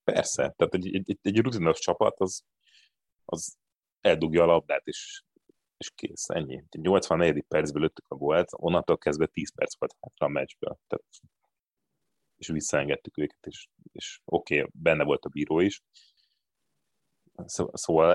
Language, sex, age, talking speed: Hungarian, male, 30-49, 135 wpm